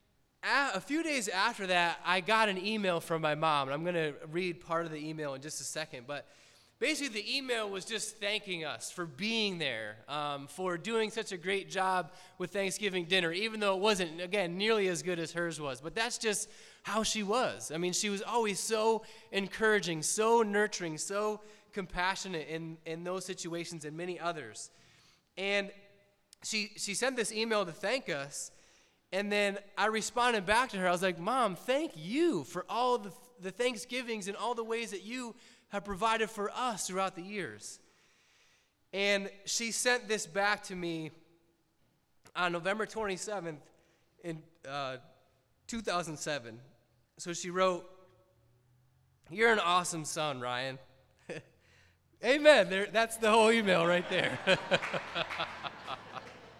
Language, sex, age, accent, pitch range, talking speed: English, male, 20-39, American, 165-215 Hz, 160 wpm